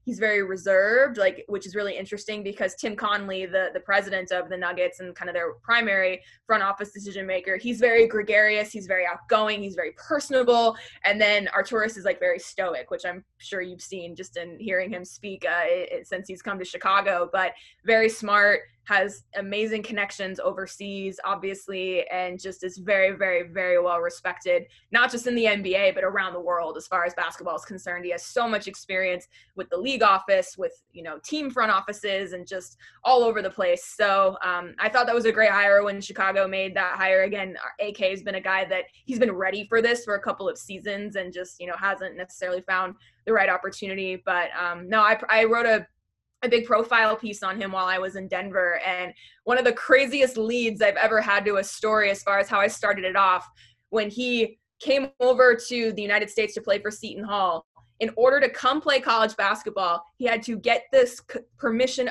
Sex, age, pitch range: female, 20-39, 190-230 Hz